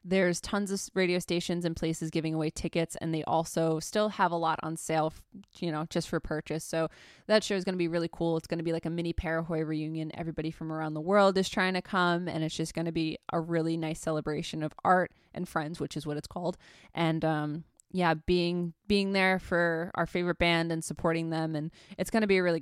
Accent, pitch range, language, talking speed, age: American, 160-185 Hz, English, 240 wpm, 20-39